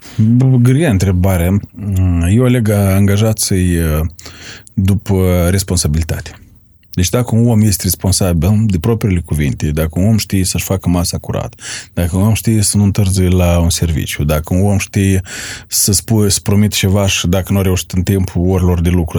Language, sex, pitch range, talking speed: Romanian, male, 90-115 Hz, 165 wpm